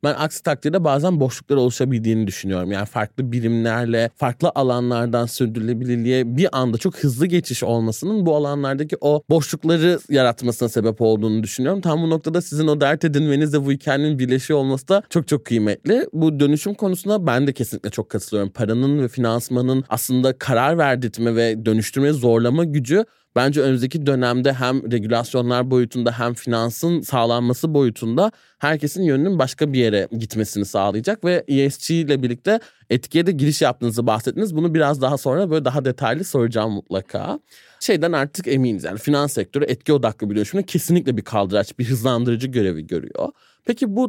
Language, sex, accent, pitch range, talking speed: Turkish, male, native, 120-155 Hz, 155 wpm